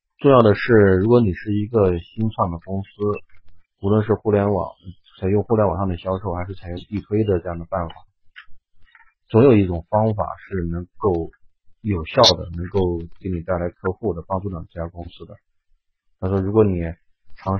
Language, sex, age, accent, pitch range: Chinese, male, 30-49, native, 85-105 Hz